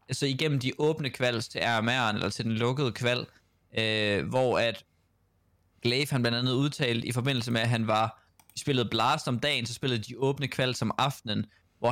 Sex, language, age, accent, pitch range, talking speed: male, Danish, 20-39, native, 115-135 Hz, 180 wpm